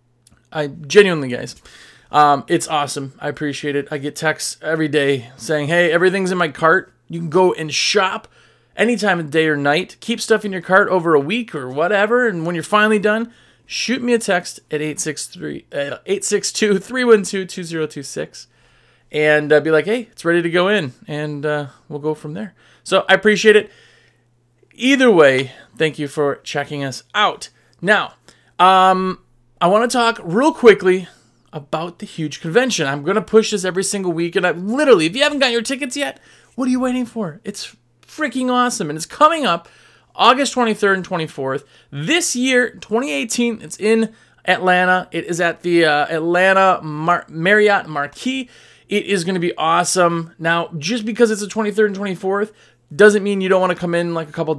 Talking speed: 185 wpm